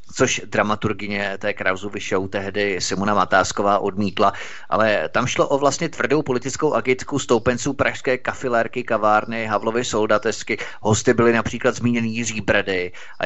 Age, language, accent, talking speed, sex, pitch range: 30-49, Czech, native, 135 wpm, male, 100-120 Hz